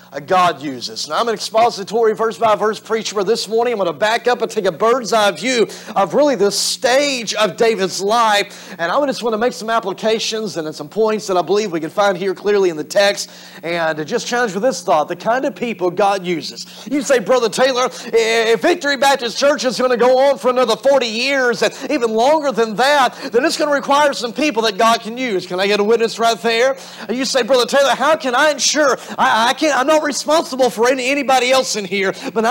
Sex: male